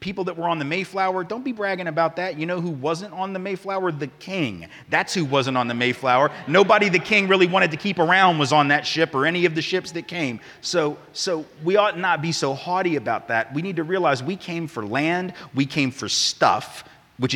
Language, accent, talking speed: English, American, 235 wpm